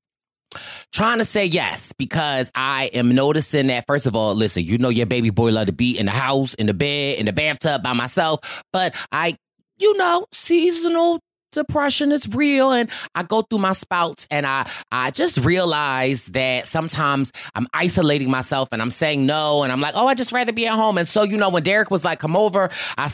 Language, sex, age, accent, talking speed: English, male, 30-49, American, 210 wpm